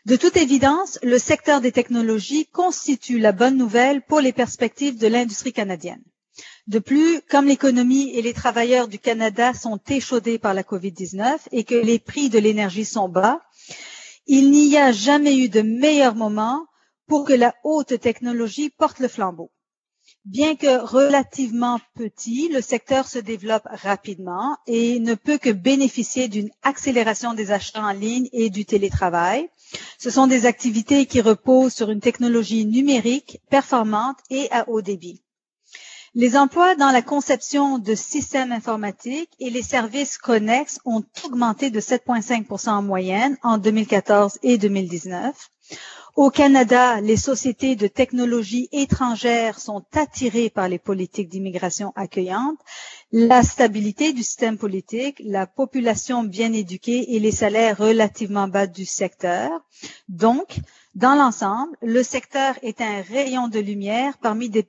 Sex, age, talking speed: female, 40-59, 145 wpm